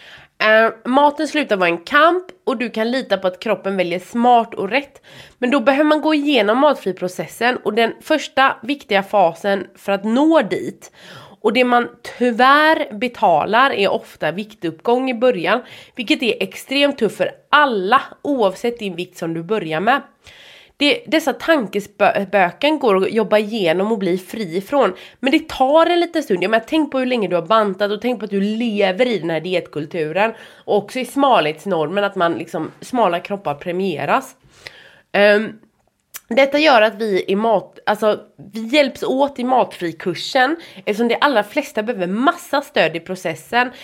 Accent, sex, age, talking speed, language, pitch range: Swedish, female, 30-49, 170 wpm, English, 190-255 Hz